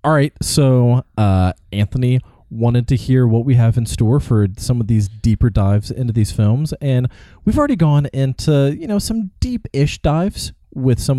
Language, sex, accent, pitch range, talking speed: English, male, American, 90-120 Hz, 175 wpm